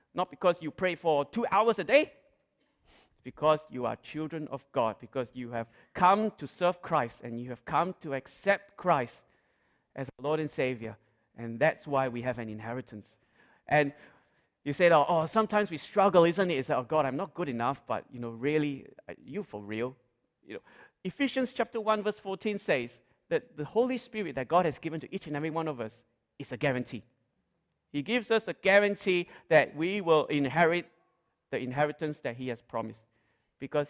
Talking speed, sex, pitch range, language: 190 wpm, male, 130-195 Hz, English